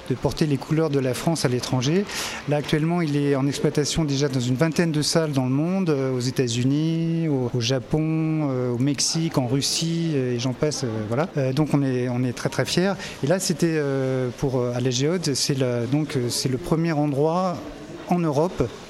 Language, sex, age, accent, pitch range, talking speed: French, male, 40-59, French, 130-160 Hz, 215 wpm